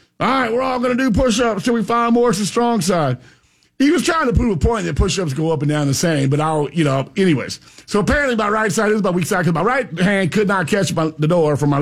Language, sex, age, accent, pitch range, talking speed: English, male, 50-69, American, 150-210 Hz, 275 wpm